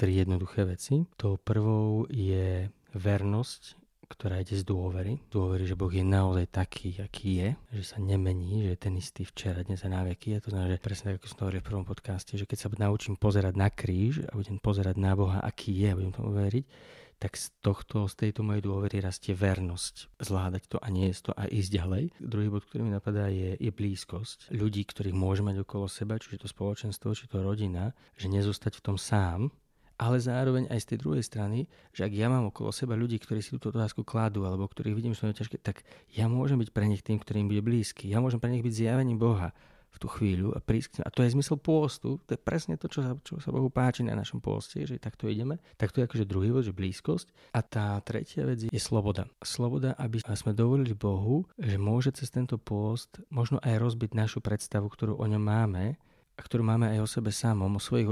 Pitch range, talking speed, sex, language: 100-120 Hz, 215 wpm, male, Slovak